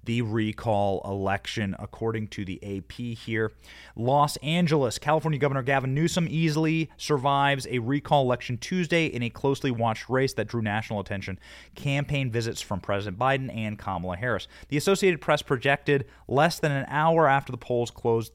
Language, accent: English, American